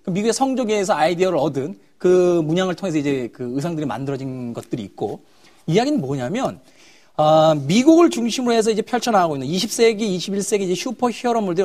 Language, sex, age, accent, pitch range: Korean, male, 40-59, native, 160-240 Hz